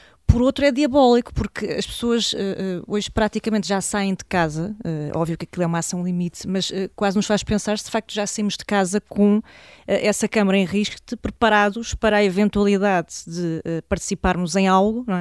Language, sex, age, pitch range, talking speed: Portuguese, female, 20-39, 180-210 Hz, 200 wpm